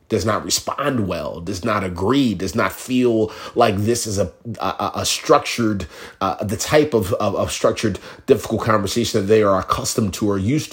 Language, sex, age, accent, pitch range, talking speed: English, male, 30-49, American, 95-115 Hz, 185 wpm